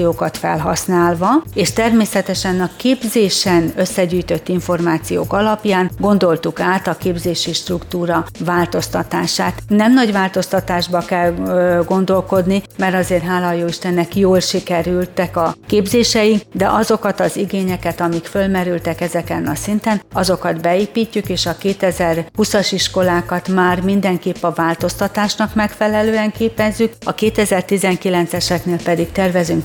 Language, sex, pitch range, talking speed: Hungarian, female, 175-200 Hz, 105 wpm